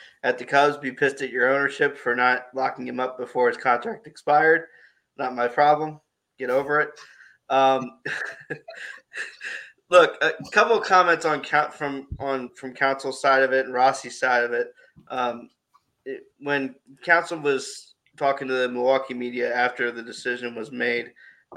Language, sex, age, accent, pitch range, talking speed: English, male, 20-39, American, 120-135 Hz, 160 wpm